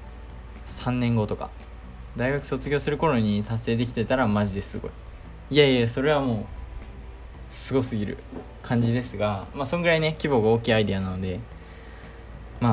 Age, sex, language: 20-39, male, Japanese